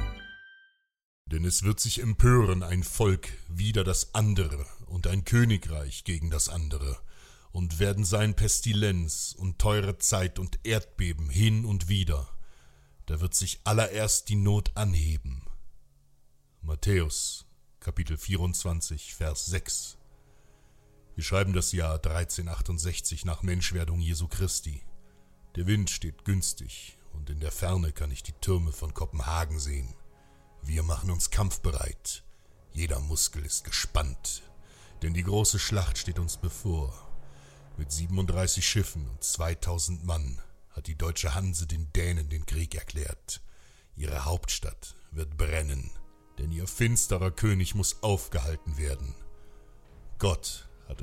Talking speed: 125 wpm